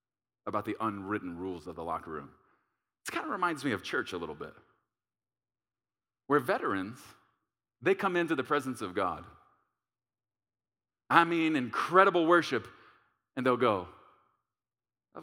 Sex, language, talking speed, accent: male, English, 140 wpm, American